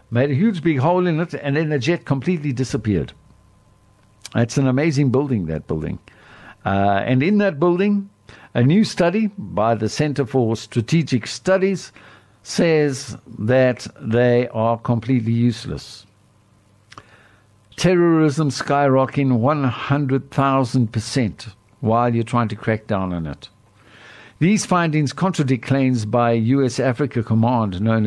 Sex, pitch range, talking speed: male, 115-145 Hz, 125 wpm